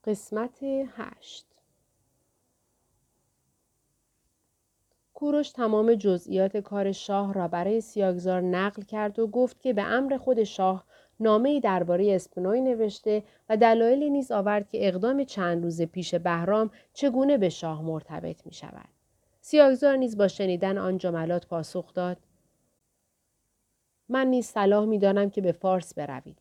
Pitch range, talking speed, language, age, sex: 180-225 Hz, 125 wpm, Persian, 30-49, female